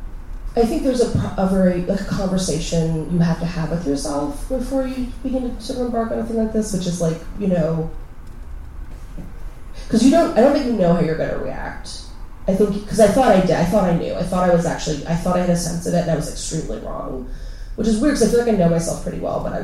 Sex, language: female, English